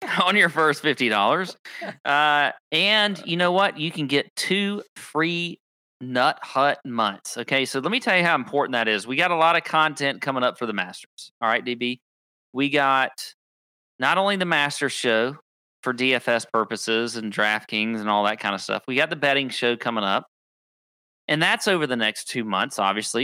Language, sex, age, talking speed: English, male, 40-59, 190 wpm